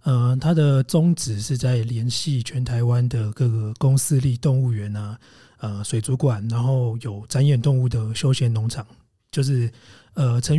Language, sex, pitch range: Chinese, male, 120-140 Hz